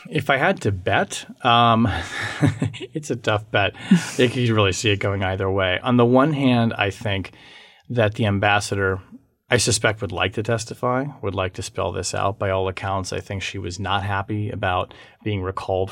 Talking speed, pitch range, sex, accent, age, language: 190 wpm, 95-120 Hz, male, American, 30-49, English